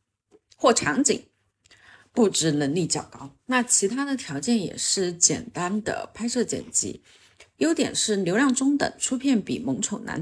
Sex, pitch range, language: female, 150-225 Hz, Chinese